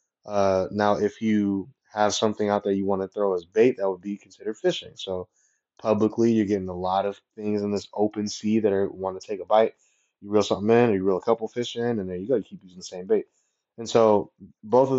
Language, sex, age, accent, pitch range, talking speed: English, male, 20-39, American, 95-110 Hz, 255 wpm